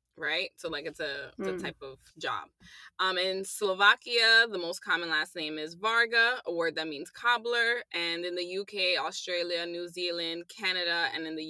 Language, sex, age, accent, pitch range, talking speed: English, female, 20-39, American, 170-215 Hz, 190 wpm